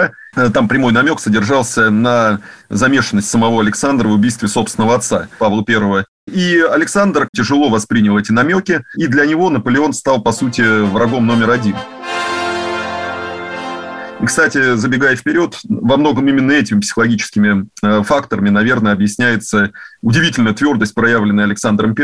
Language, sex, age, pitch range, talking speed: Russian, male, 30-49, 105-125 Hz, 125 wpm